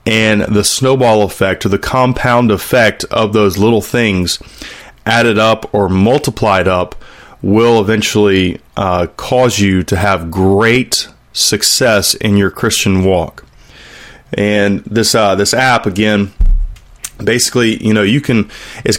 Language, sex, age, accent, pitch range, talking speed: English, male, 30-49, American, 100-110 Hz, 135 wpm